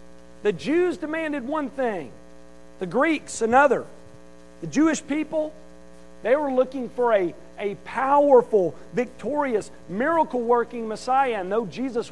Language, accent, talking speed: English, American, 120 wpm